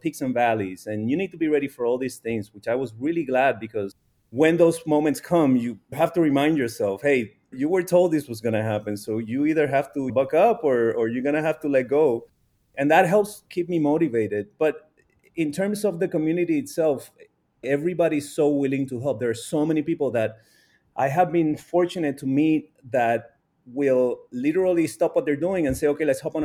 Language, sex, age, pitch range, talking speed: English, male, 30-49, 125-160 Hz, 220 wpm